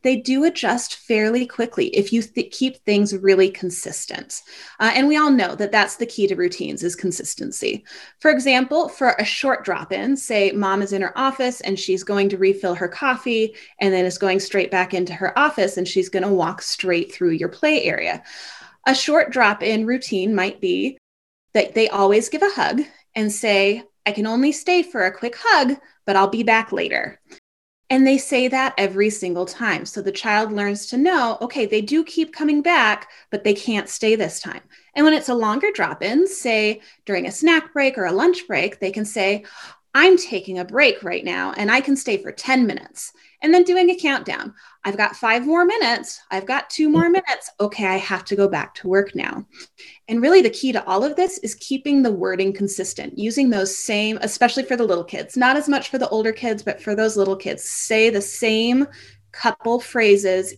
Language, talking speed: English, 205 wpm